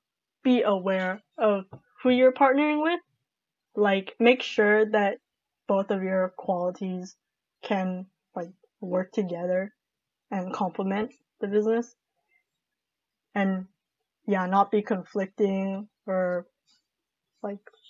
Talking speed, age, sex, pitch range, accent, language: 100 wpm, 10-29, female, 190-225 Hz, American, English